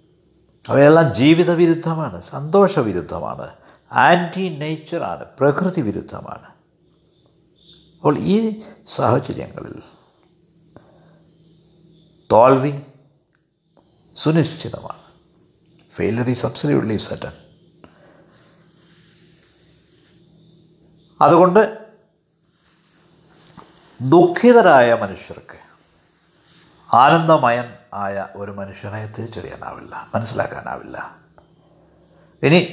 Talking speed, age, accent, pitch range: 50 wpm, 60-79, native, 145-175 Hz